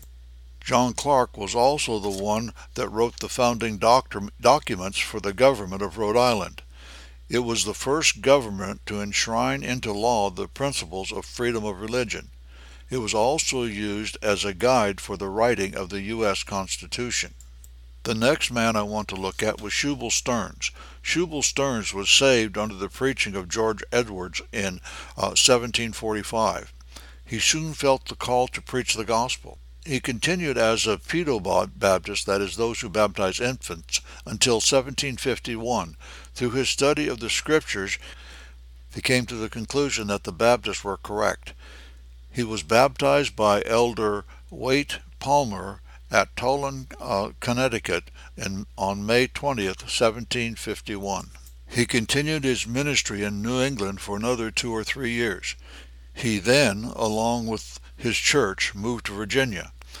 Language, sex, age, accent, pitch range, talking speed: English, male, 60-79, American, 95-125 Hz, 150 wpm